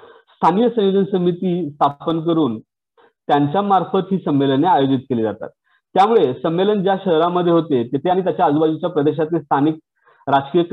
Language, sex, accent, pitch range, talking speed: English, male, Indian, 145-185 Hz, 115 wpm